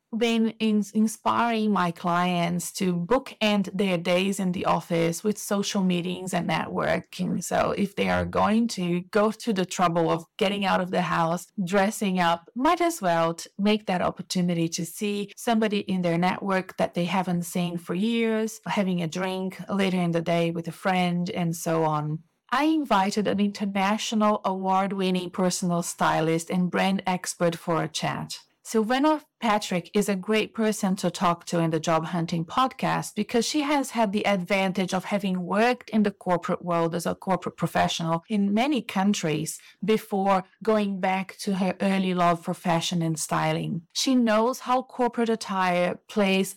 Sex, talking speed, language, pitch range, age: female, 170 wpm, English, 175-215 Hz, 30-49